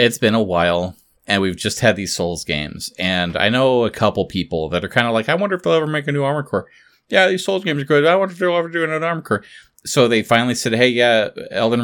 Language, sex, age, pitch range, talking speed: English, male, 30-49, 95-135 Hz, 275 wpm